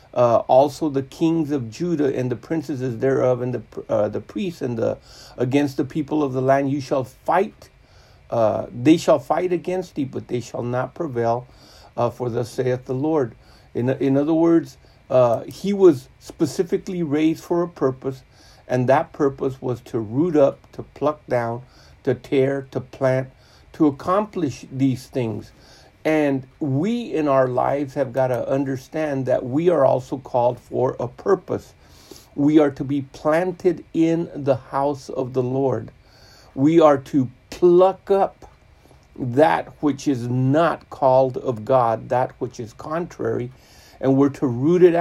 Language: English